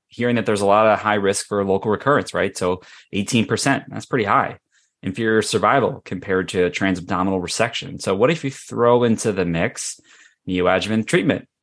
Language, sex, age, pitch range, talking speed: English, male, 20-39, 95-120 Hz, 170 wpm